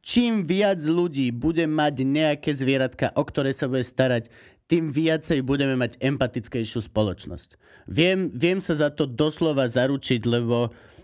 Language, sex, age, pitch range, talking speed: Slovak, male, 30-49, 115-150 Hz, 140 wpm